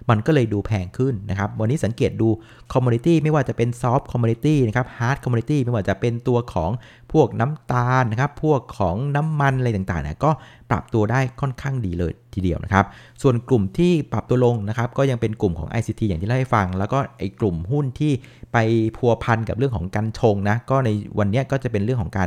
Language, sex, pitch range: Thai, male, 100-130 Hz